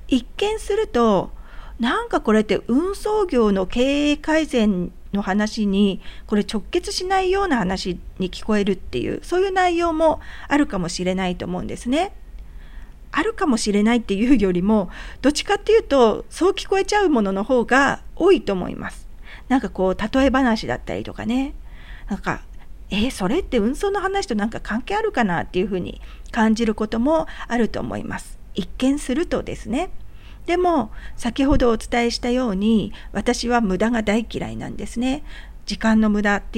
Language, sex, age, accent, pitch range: Japanese, female, 40-59, Australian, 200-295 Hz